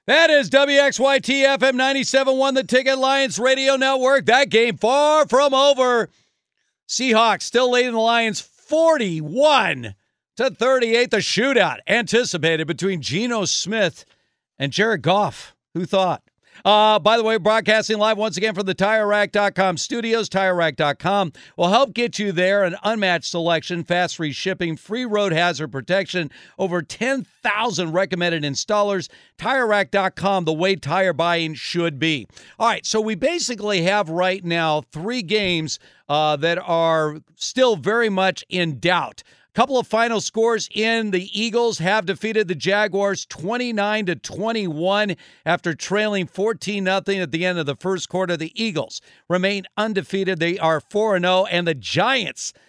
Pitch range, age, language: 175-230 Hz, 50-69, English